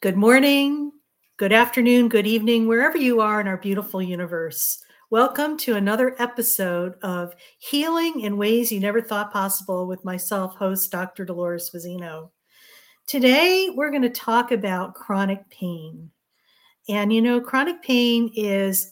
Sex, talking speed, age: female, 145 wpm, 50-69